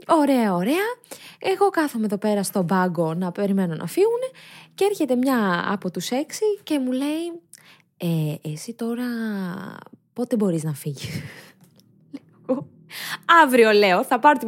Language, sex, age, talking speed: Greek, female, 20-39, 135 wpm